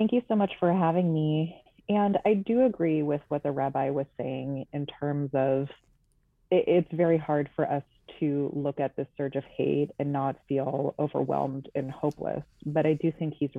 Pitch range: 140-155 Hz